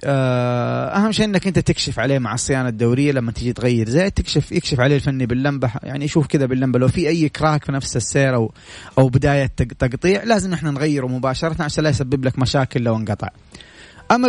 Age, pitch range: 30-49, 125-165 Hz